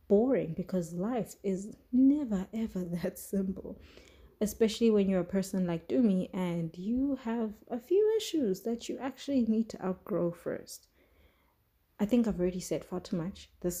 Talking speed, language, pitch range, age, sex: 160 wpm, English, 170-215 Hz, 20-39, female